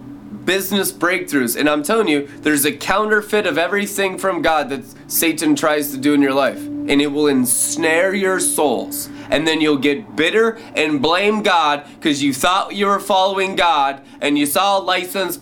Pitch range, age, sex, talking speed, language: 145-195 Hz, 20-39, male, 185 wpm, English